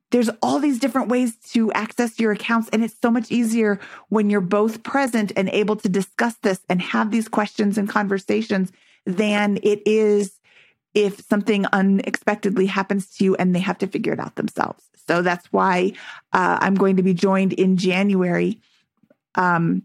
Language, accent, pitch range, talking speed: English, American, 195-240 Hz, 175 wpm